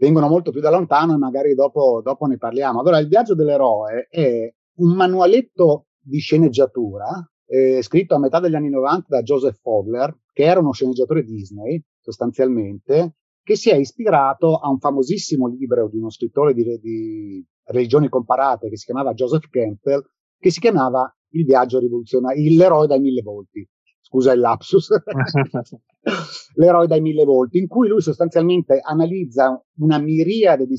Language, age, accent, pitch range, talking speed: Italian, 30-49, native, 130-175 Hz, 160 wpm